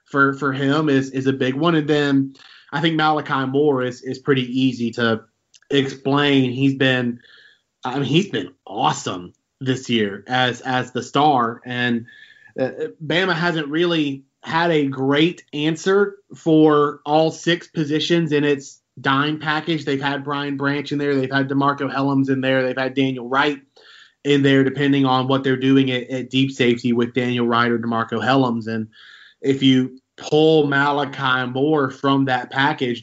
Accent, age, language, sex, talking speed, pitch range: American, 20-39, English, male, 165 wpm, 130-145 Hz